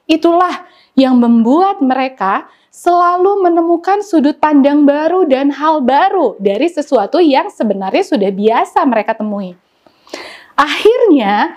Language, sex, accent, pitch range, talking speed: Indonesian, female, native, 265-360 Hz, 110 wpm